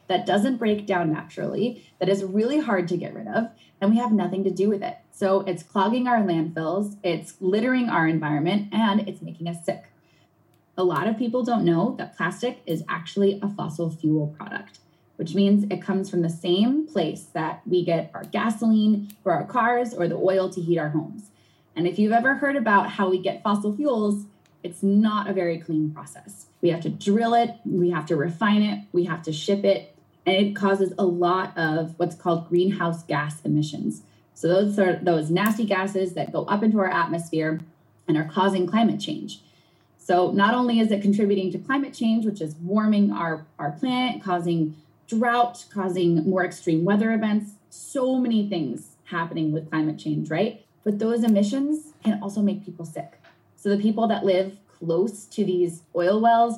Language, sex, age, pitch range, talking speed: English, female, 20-39, 170-215 Hz, 190 wpm